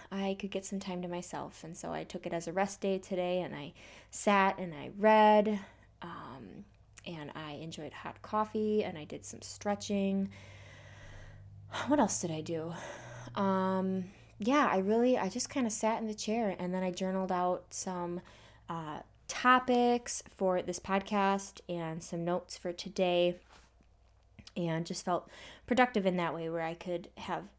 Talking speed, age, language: 170 wpm, 20-39, English